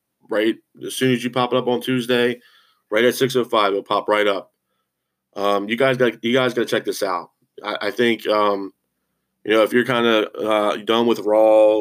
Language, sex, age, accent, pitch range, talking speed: English, male, 20-39, American, 105-120 Hz, 220 wpm